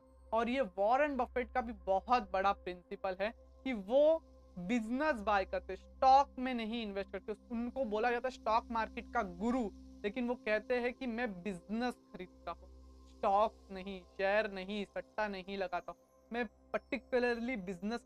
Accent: native